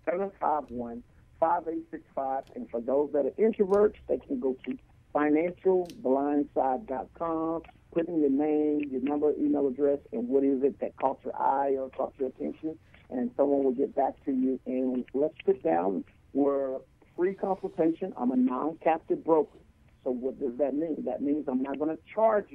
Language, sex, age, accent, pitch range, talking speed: English, male, 60-79, American, 130-180 Hz, 185 wpm